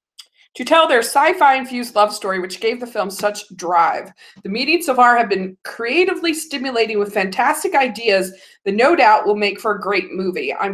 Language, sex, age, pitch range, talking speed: English, female, 20-39, 185-255 Hz, 190 wpm